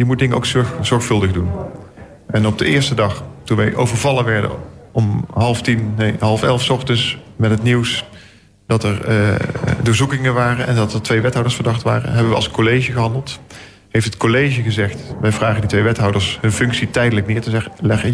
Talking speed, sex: 190 wpm, male